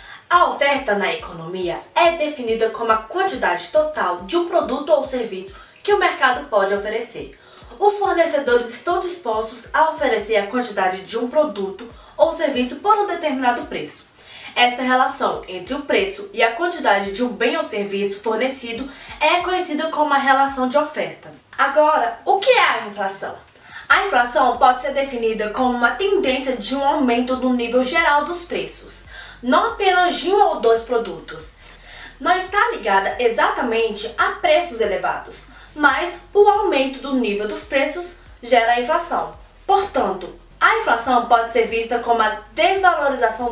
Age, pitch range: 20-39, 230-335 Hz